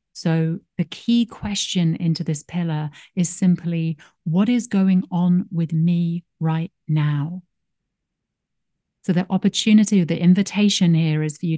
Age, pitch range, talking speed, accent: 30-49, 155-195 Hz, 135 wpm, British